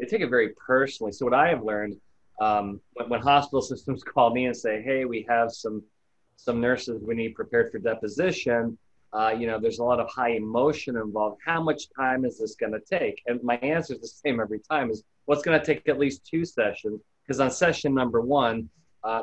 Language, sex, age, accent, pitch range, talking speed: English, male, 30-49, American, 115-145 Hz, 220 wpm